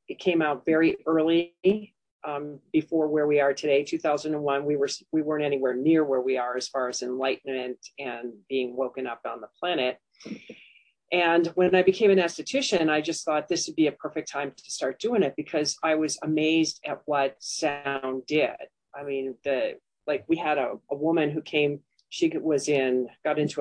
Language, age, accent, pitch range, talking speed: English, 40-59, American, 140-160 Hz, 190 wpm